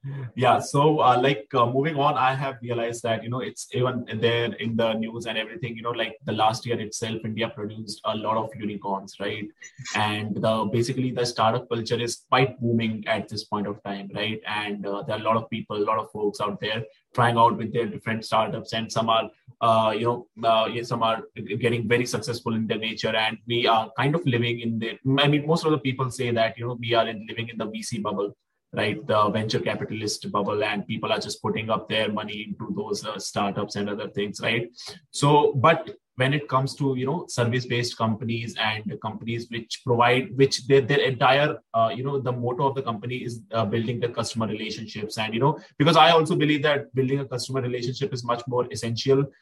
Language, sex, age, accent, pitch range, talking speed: English, male, 20-39, Indian, 110-130 Hz, 220 wpm